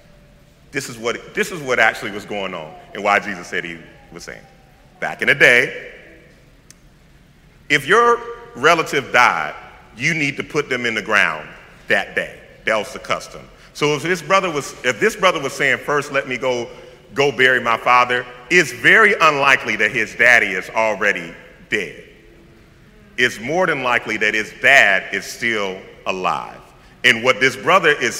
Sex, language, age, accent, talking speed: male, English, 40-59, American, 170 wpm